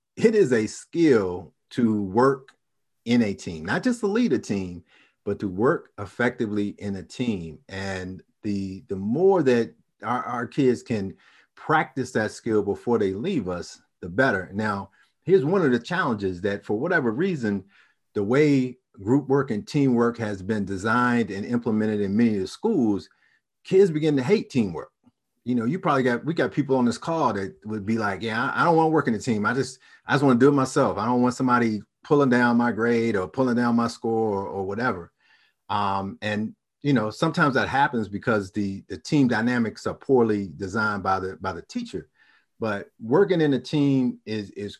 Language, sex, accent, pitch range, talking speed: English, male, American, 100-135 Hz, 195 wpm